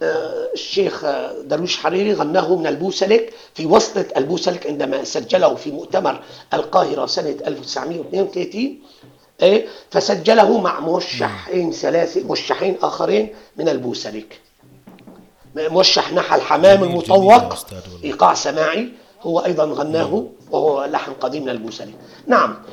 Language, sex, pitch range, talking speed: Arabic, male, 185-260 Hz, 100 wpm